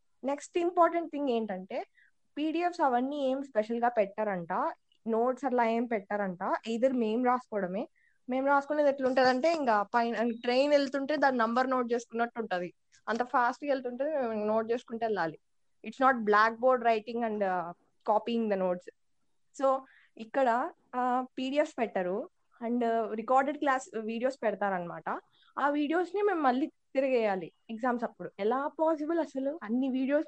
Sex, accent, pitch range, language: female, native, 220-280 Hz, Telugu